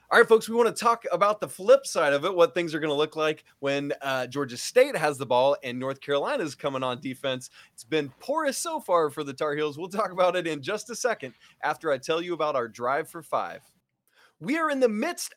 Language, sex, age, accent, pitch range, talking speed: English, male, 20-39, American, 145-215 Hz, 255 wpm